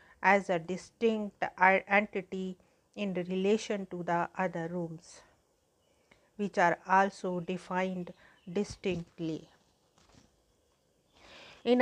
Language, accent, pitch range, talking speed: English, Indian, 180-210 Hz, 80 wpm